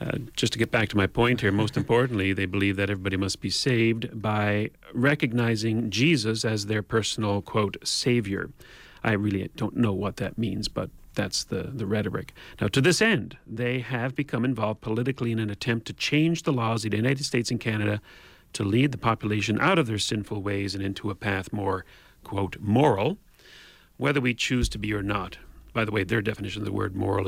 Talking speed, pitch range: 200 wpm, 105-125 Hz